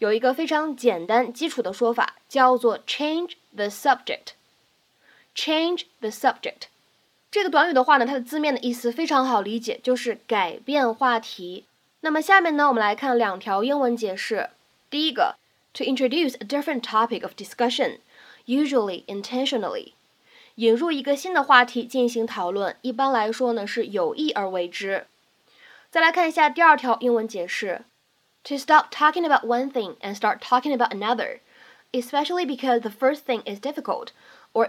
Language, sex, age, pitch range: Chinese, female, 10-29, 225-295 Hz